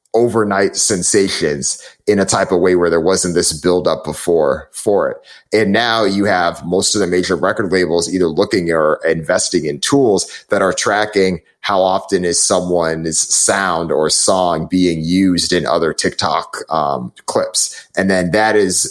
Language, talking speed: English, 165 wpm